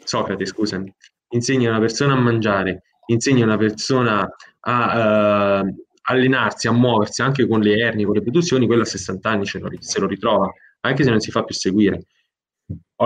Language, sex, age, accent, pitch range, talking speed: Italian, male, 20-39, native, 105-135 Hz, 180 wpm